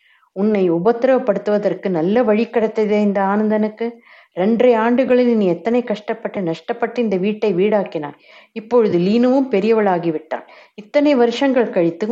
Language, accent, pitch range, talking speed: Tamil, native, 175-225 Hz, 105 wpm